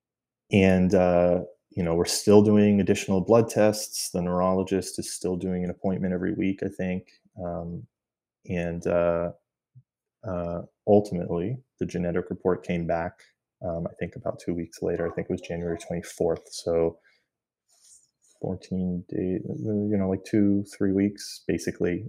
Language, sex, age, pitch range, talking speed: English, male, 20-39, 85-105 Hz, 145 wpm